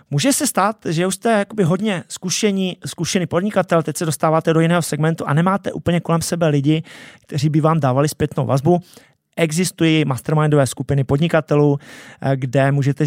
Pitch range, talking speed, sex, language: 145-190 Hz, 150 wpm, male, Czech